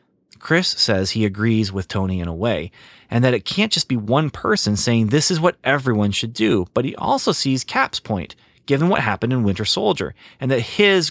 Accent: American